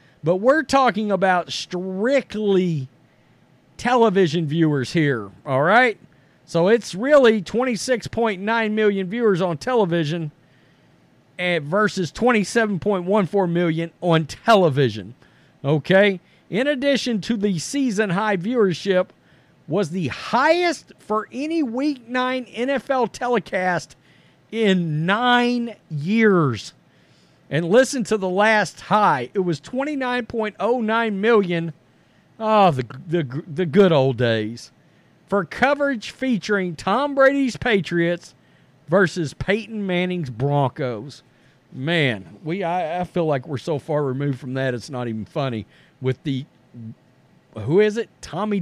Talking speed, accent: 110 wpm, American